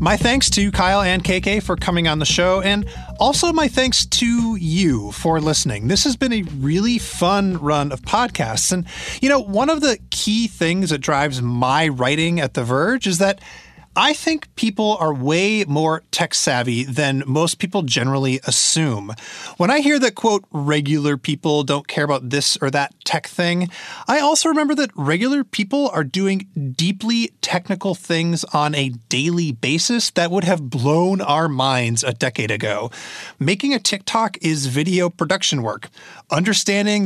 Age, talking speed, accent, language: 30-49, 170 wpm, American, English